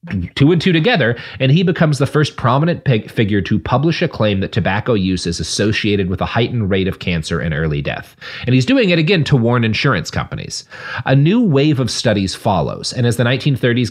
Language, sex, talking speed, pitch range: English, male, 210 wpm, 100-135 Hz